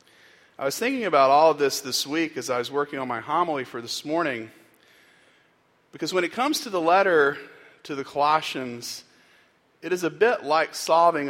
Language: English